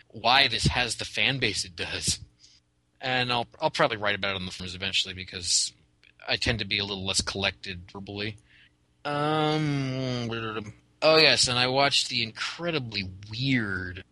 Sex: male